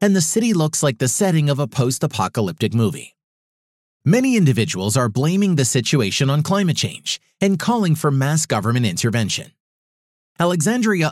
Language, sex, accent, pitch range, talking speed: English, male, American, 120-170 Hz, 145 wpm